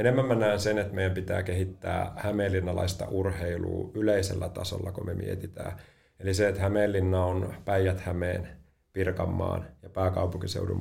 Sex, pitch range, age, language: male, 90-100 Hz, 30-49, Finnish